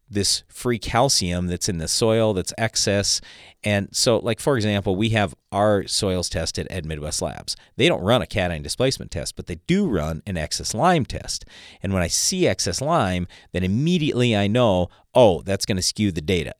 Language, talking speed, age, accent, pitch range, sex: English, 195 wpm, 40-59, American, 85-110 Hz, male